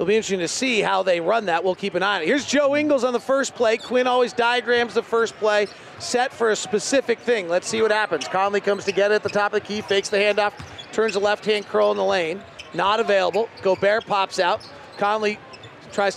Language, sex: English, male